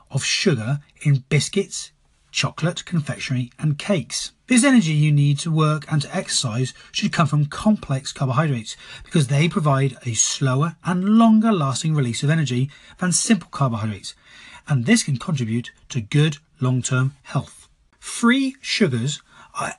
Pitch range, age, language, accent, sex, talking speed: 130-195 Hz, 30-49, English, British, male, 145 wpm